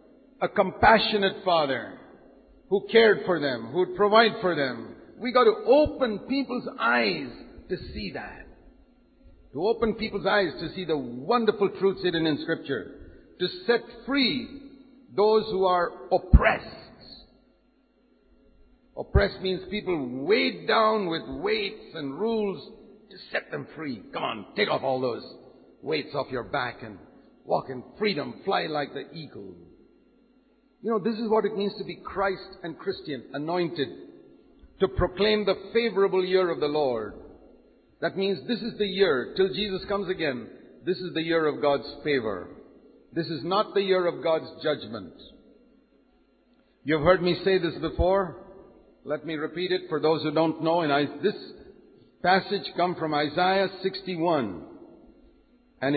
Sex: male